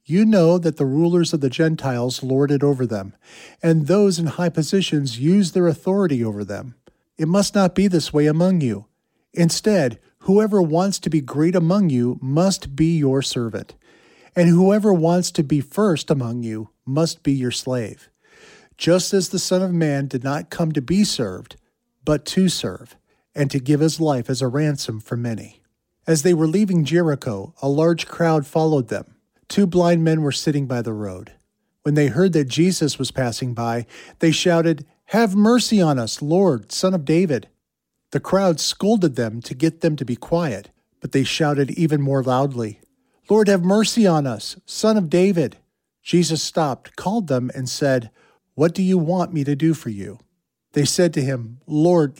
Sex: male